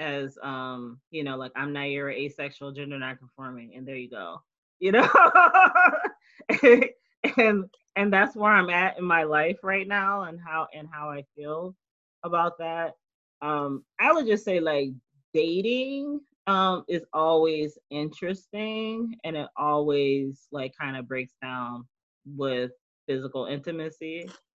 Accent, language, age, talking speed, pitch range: American, English, 20-39, 140 wpm, 135-185 Hz